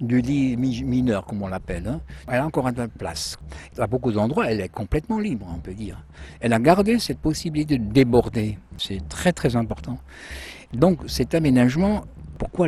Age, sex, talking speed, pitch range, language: 60-79, male, 185 wpm, 95-135 Hz, French